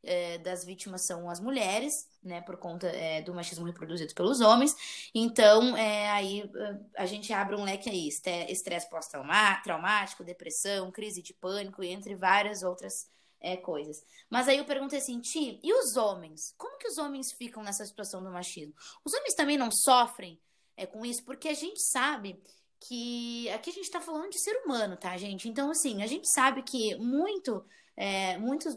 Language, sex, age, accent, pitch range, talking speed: Portuguese, female, 20-39, Brazilian, 190-305 Hz, 175 wpm